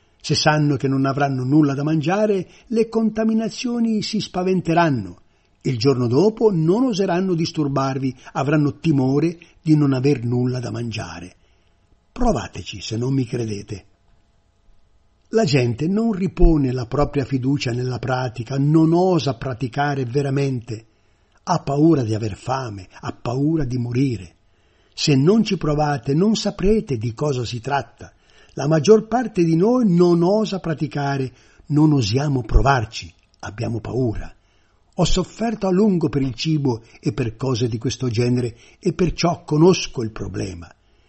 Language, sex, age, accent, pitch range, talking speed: Italian, male, 50-69, native, 110-165 Hz, 135 wpm